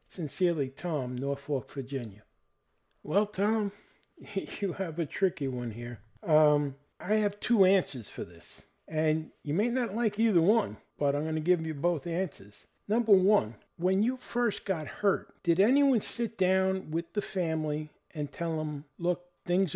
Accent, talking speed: American, 160 wpm